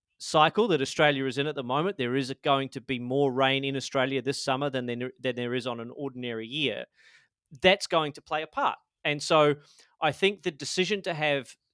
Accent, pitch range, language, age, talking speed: Australian, 130-155 Hz, English, 30-49, 210 wpm